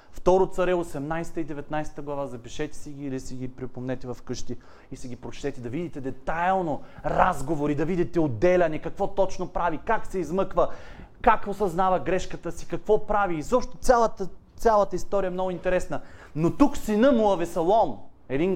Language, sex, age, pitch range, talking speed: Bulgarian, male, 30-49, 150-195 Hz, 160 wpm